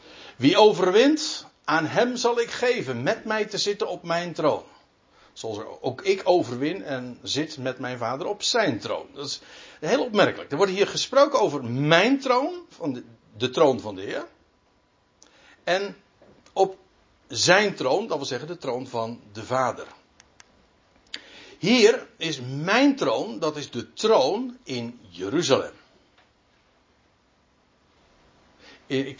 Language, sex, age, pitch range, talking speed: Dutch, male, 60-79, 125-200 Hz, 135 wpm